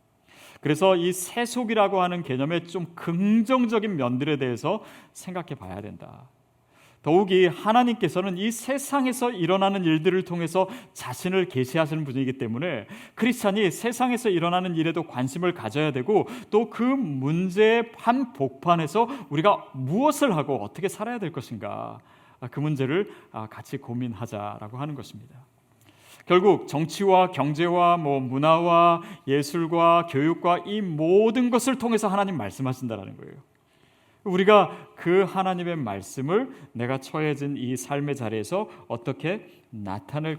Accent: native